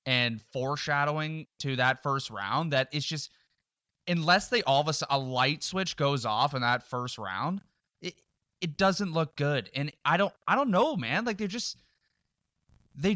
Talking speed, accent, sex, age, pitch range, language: 180 wpm, American, male, 20-39, 120-170 Hz, English